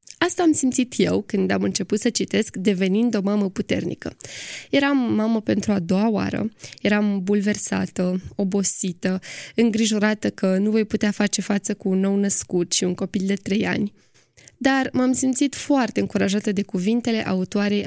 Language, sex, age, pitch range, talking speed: Romanian, female, 20-39, 195-235 Hz, 160 wpm